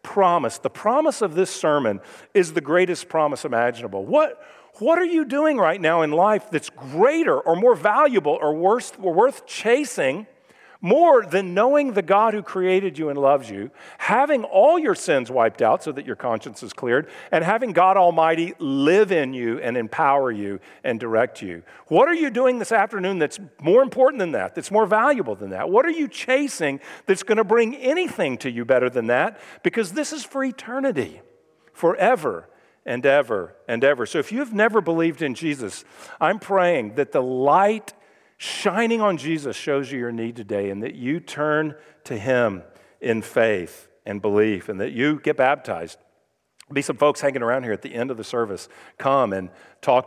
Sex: male